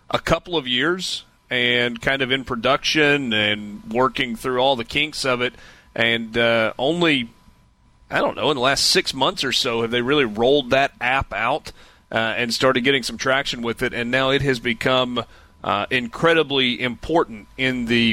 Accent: American